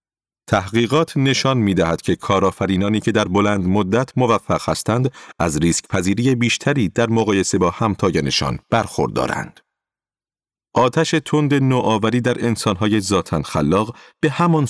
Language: Persian